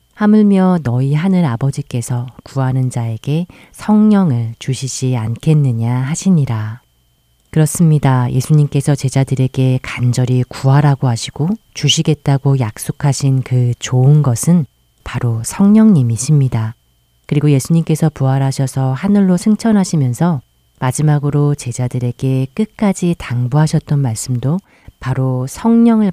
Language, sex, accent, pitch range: Korean, female, native, 125-155 Hz